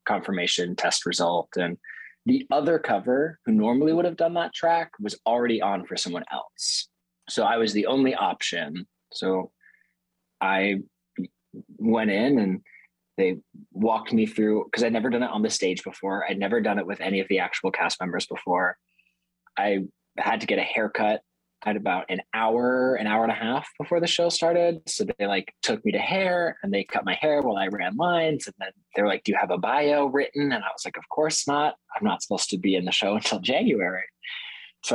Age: 20-39